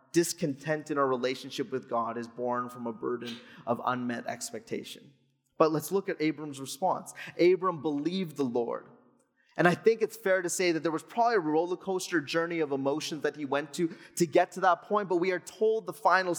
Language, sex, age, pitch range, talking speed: English, male, 20-39, 140-180 Hz, 205 wpm